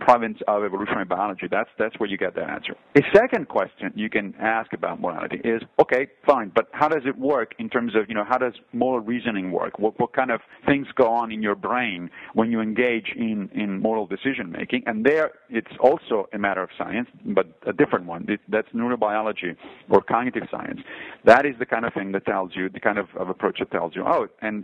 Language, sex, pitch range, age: English, male, 105-130 Hz, 40-59